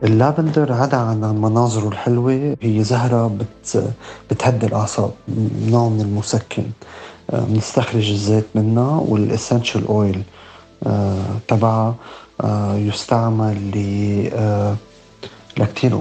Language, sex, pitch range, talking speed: Arabic, male, 105-115 Hz, 75 wpm